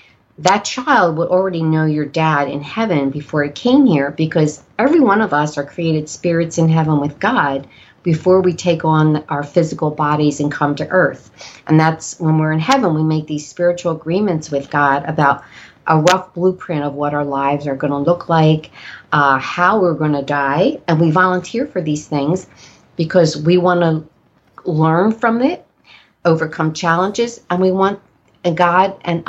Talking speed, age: 180 wpm, 40-59